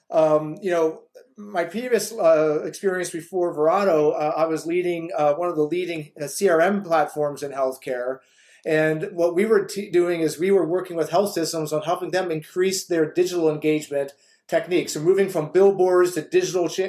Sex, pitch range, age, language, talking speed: male, 160-200 Hz, 30-49, English, 180 wpm